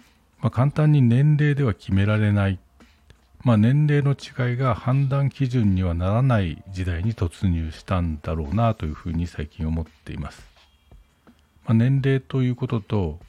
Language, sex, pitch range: Japanese, male, 85-115 Hz